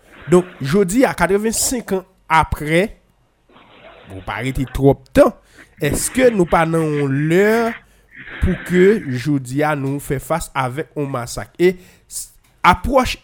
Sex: male